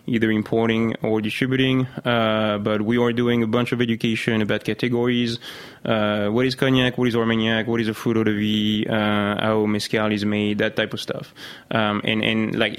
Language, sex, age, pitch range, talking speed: English, male, 20-39, 110-130 Hz, 190 wpm